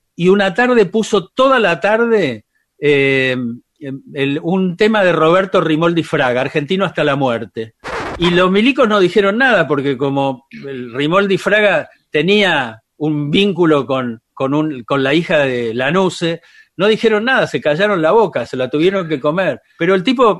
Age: 50-69